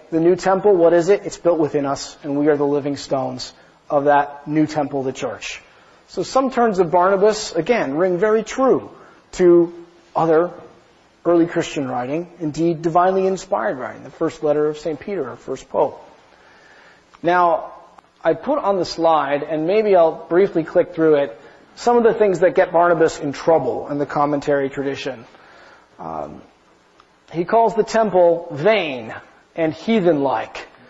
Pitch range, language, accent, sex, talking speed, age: 150-190 Hz, English, American, male, 160 wpm, 40-59